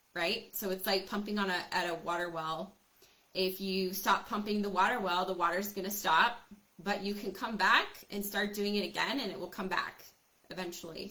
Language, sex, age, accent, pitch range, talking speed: English, female, 20-39, American, 180-215 Hz, 210 wpm